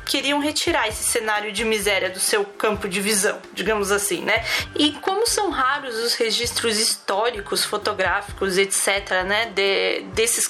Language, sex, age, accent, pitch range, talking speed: Portuguese, female, 20-39, Brazilian, 230-320 Hz, 145 wpm